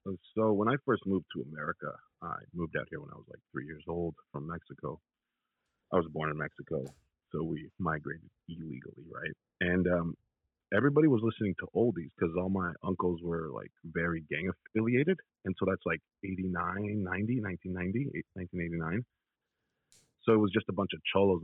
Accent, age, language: American, 30-49, English